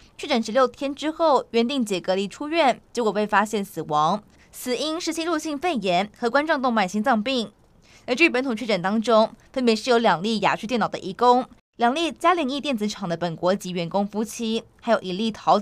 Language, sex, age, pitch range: Chinese, female, 20-39, 210-260 Hz